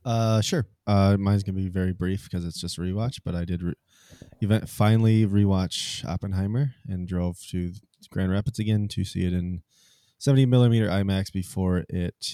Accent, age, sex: American, 20-39, male